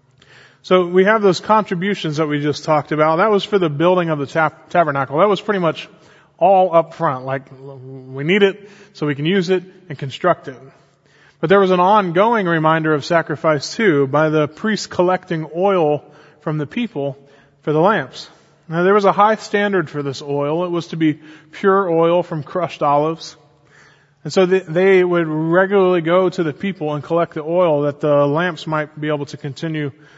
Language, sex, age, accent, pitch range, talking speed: English, male, 20-39, American, 145-175 Hz, 190 wpm